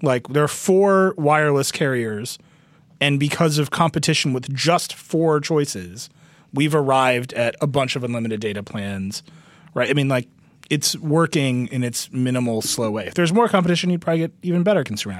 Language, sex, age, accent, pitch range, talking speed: English, male, 30-49, American, 115-160 Hz, 175 wpm